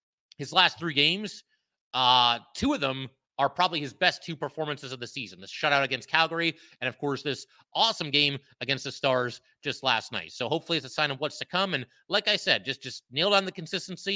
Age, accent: 30-49, American